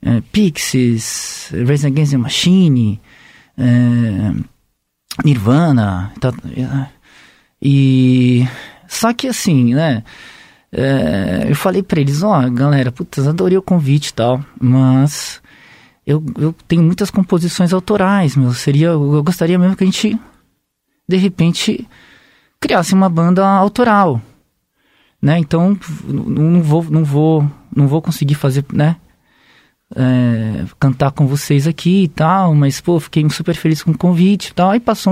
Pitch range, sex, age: 135-180 Hz, male, 20-39